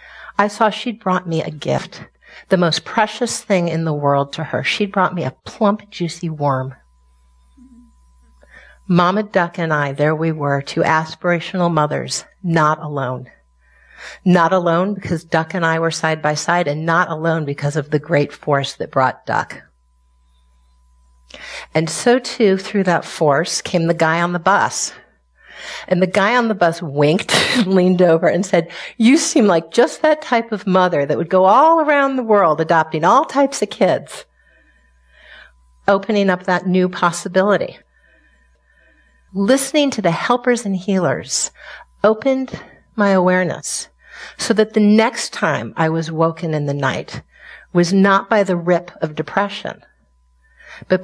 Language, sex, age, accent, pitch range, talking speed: English, female, 50-69, American, 150-200 Hz, 155 wpm